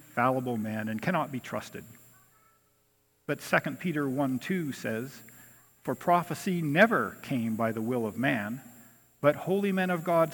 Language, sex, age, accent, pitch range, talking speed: English, male, 50-69, American, 120-160 Hz, 150 wpm